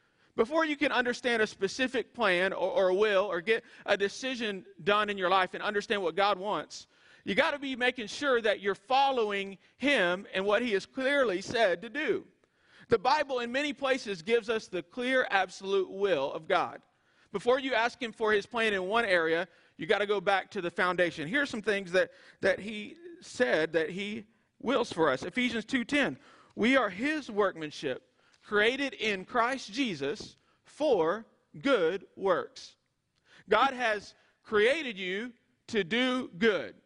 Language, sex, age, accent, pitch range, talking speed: English, male, 40-59, American, 200-260 Hz, 170 wpm